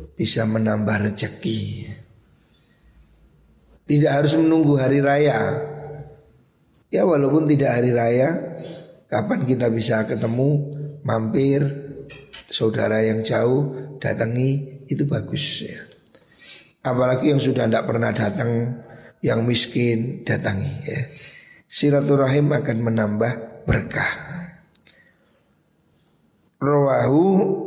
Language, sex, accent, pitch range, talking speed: Indonesian, male, native, 120-150 Hz, 85 wpm